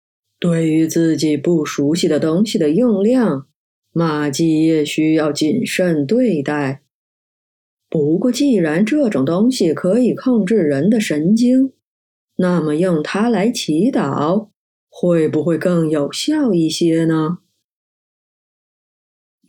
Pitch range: 155-205 Hz